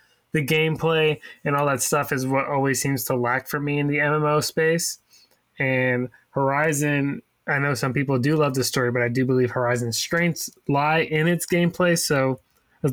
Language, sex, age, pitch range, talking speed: English, male, 20-39, 135-165 Hz, 185 wpm